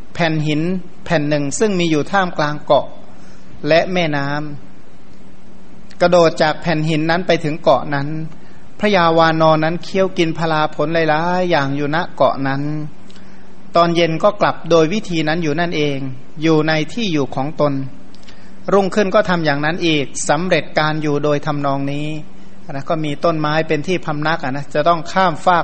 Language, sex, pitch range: Thai, male, 150-175 Hz